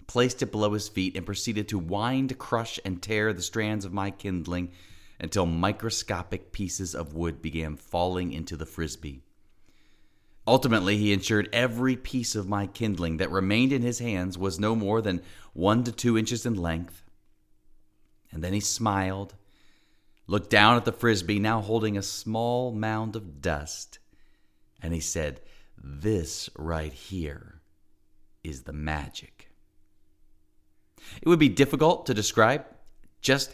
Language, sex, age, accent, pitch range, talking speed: English, male, 30-49, American, 85-115 Hz, 145 wpm